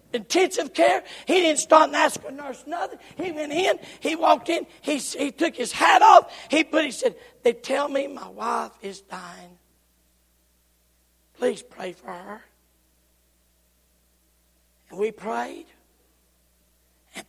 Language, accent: English, American